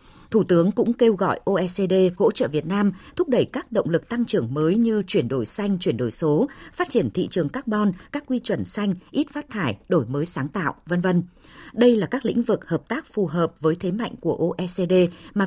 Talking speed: 225 wpm